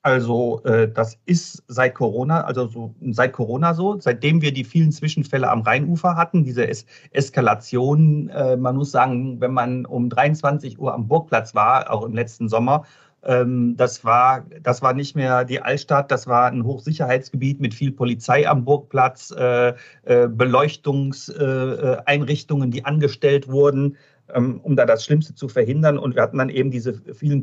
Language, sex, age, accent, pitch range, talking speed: German, male, 40-59, German, 125-150 Hz, 165 wpm